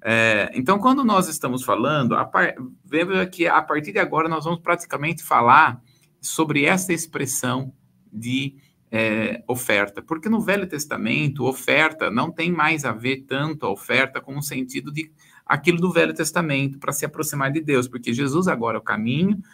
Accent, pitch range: Brazilian, 130-165 Hz